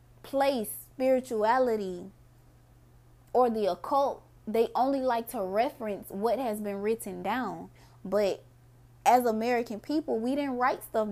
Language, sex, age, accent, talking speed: English, female, 20-39, American, 125 wpm